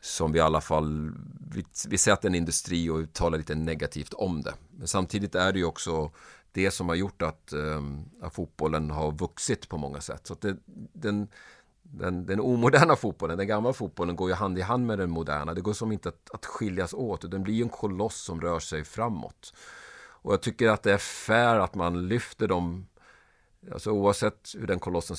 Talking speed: 210 wpm